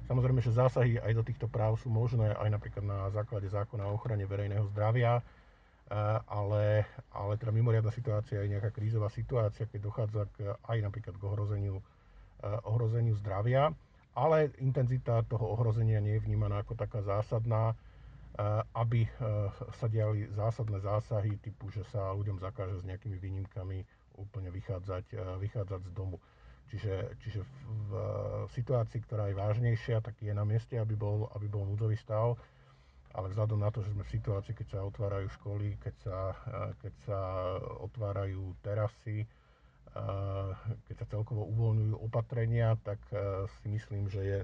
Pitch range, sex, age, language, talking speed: 100-115 Hz, male, 50-69, Slovak, 145 wpm